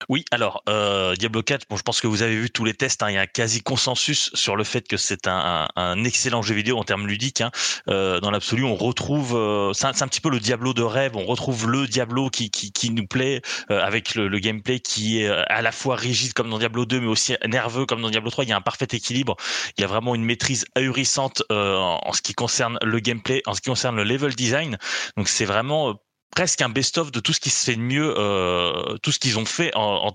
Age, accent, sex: 20-39, French, male